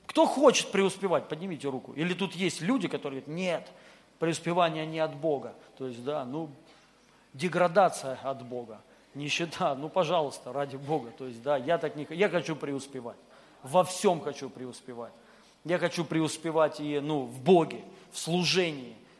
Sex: male